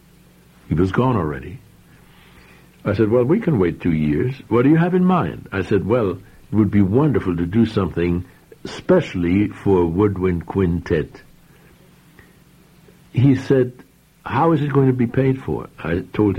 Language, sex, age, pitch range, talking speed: English, male, 60-79, 95-150 Hz, 165 wpm